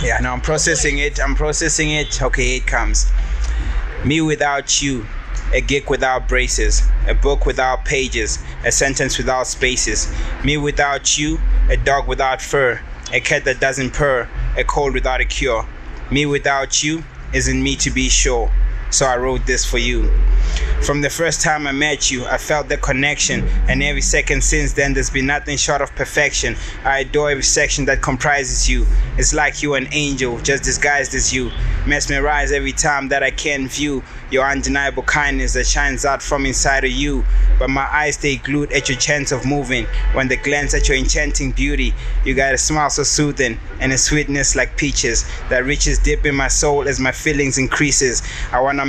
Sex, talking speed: male, 190 wpm